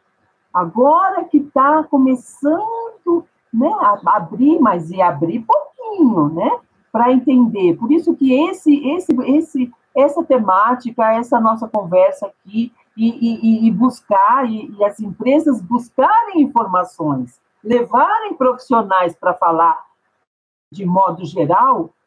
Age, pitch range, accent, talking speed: 50-69, 170-270 Hz, Brazilian, 110 wpm